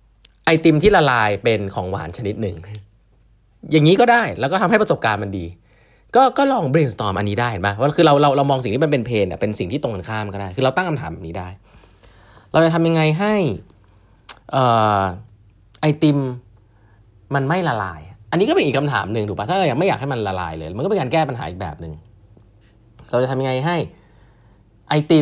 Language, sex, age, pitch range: Thai, male, 30-49, 105-155 Hz